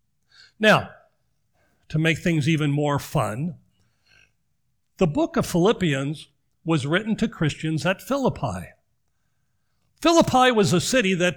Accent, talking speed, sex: American, 115 wpm, male